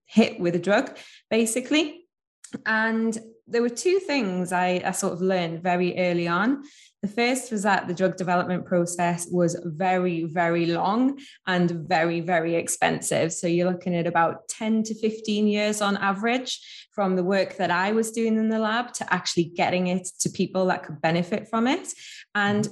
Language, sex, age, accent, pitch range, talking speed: English, female, 20-39, British, 175-220 Hz, 175 wpm